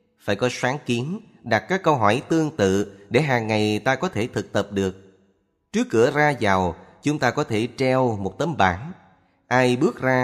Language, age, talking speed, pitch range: Vietnamese, 30-49, 200 wpm, 100-125 Hz